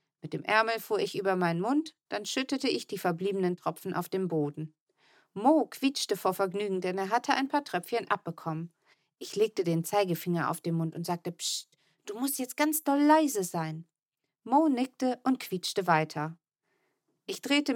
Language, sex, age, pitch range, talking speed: German, female, 40-59, 170-245 Hz, 175 wpm